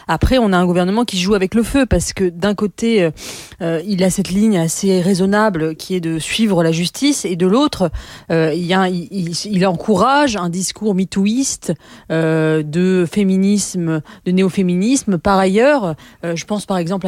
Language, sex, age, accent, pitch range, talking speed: French, female, 30-49, French, 170-210 Hz, 185 wpm